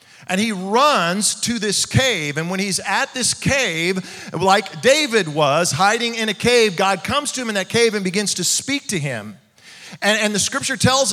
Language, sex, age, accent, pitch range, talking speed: English, male, 40-59, American, 165-240 Hz, 200 wpm